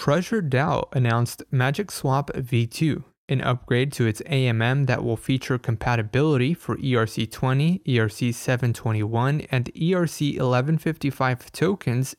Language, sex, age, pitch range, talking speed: English, male, 20-39, 120-145 Hz, 95 wpm